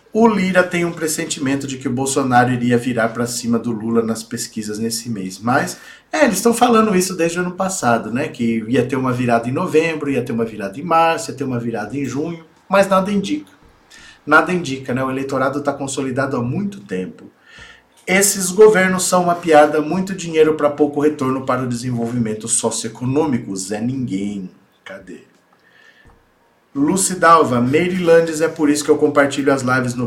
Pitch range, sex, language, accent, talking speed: 120-160 Hz, male, Portuguese, Brazilian, 180 wpm